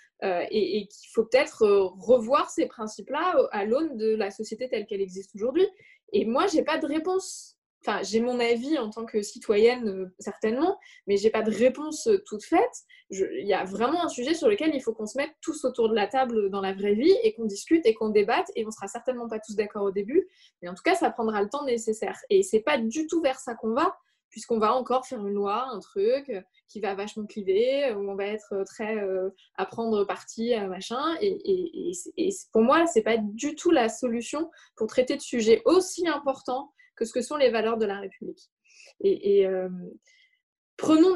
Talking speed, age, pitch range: 215 wpm, 20-39, 220-310 Hz